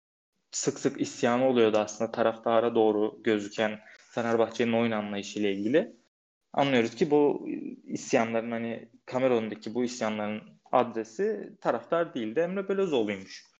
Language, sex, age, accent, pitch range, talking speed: Turkish, male, 20-39, native, 110-135 Hz, 125 wpm